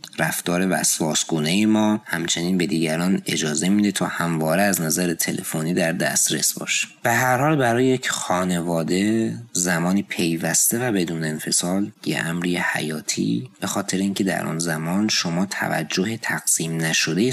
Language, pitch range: Persian, 85-110 Hz